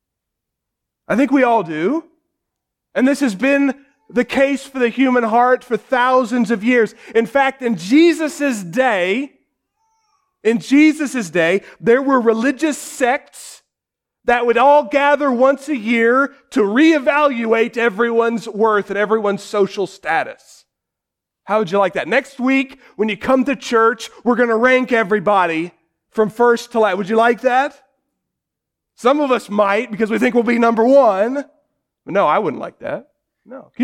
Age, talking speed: 40-59, 160 wpm